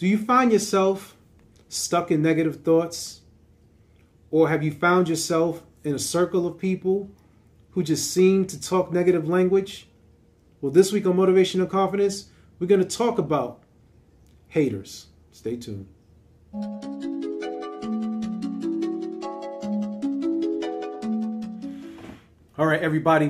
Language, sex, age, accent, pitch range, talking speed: English, male, 40-59, American, 120-185 Hz, 110 wpm